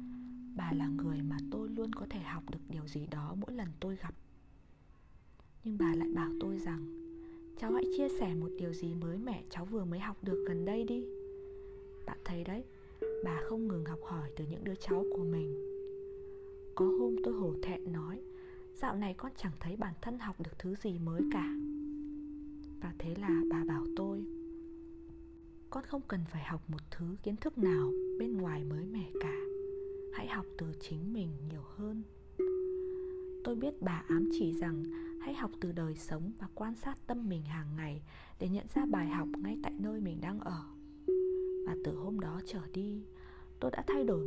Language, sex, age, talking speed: Vietnamese, female, 20-39, 190 wpm